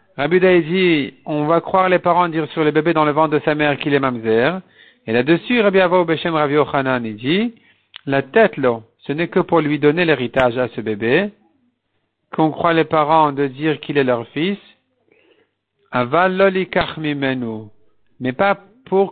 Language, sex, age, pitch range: French, male, 50-69, 140-185 Hz